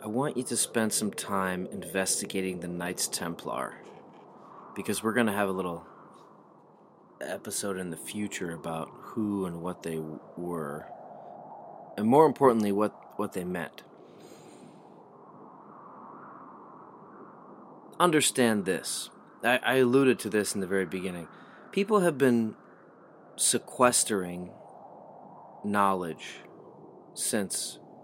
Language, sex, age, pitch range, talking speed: English, male, 30-49, 95-125 Hz, 110 wpm